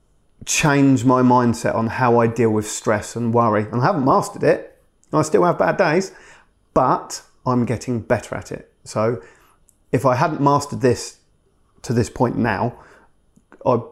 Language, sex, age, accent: English, male, 30-49, British